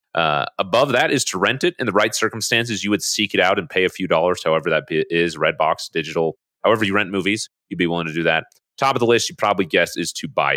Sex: male